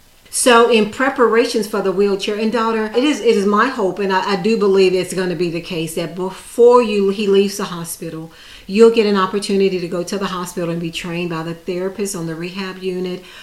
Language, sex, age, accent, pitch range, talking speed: English, female, 40-59, American, 175-215 Hz, 230 wpm